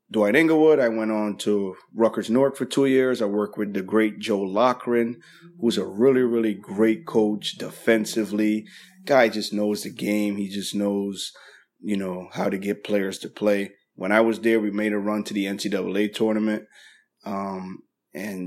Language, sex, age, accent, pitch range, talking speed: English, male, 20-39, American, 100-110 Hz, 180 wpm